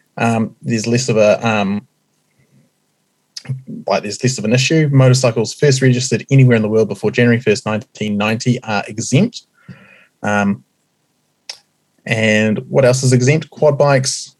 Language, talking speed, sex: English, 140 wpm, male